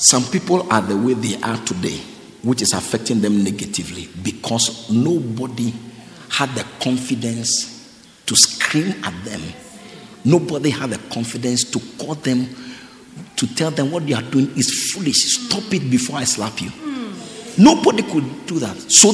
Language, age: English, 50-69